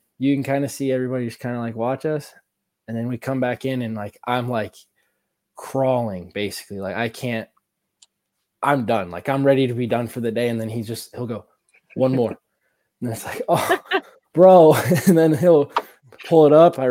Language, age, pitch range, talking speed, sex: English, 20-39, 115-135 Hz, 205 wpm, male